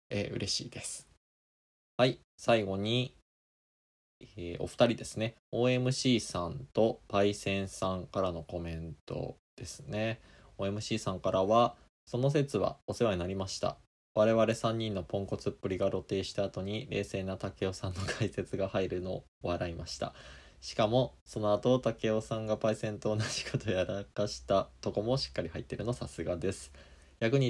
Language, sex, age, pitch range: Japanese, male, 20-39, 90-115 Hz